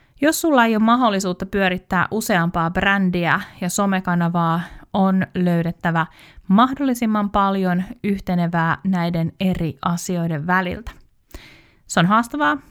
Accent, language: native, Finnish